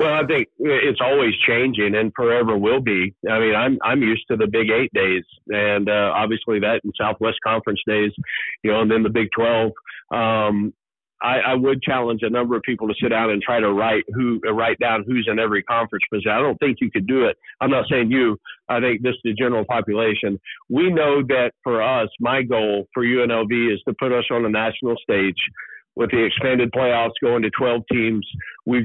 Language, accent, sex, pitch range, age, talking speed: English, American, male, 110-125 Hz, 50-69, 215 wpm